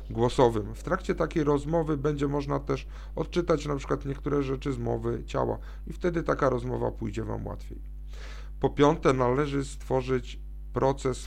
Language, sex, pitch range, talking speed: Polish, male, 125-150 Hz, 145 wpm